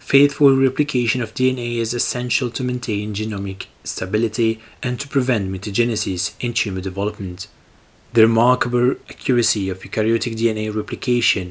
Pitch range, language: 105-130 Hz, English